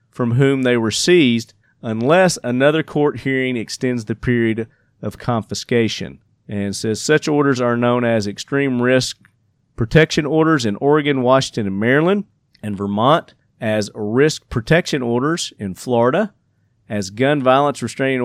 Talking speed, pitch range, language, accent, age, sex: 140 wpm, 110-140 Hz, English, American, 40-59, male